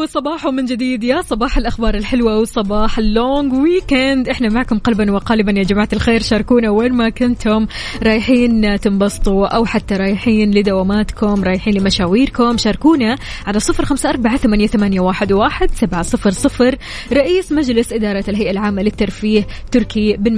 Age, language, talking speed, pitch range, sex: 20-39, Arabic, 145 wpm, 200-235 Hz, female